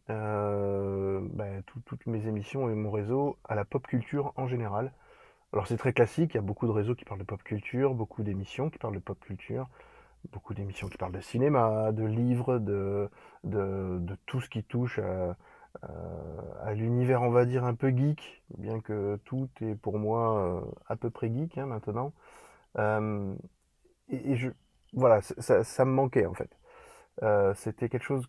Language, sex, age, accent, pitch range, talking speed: French, male, 20-39, French, 105-130 Hz, 190 wpm